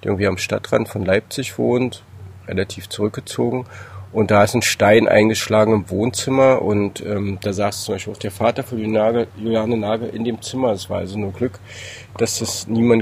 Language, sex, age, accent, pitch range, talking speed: German, male, 40-59, German, 100-115 Hz, 180 wpm